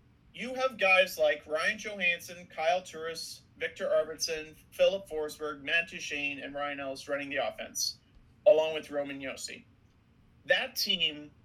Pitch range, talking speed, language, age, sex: 160-220 Hz, 135 wpm, English, 40-59, male